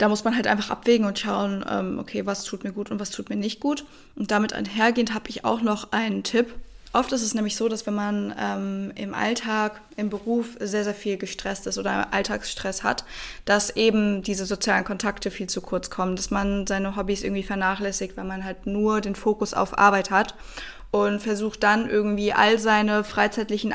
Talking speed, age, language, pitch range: 200 wpm, 20-39, German, 200-225 Hz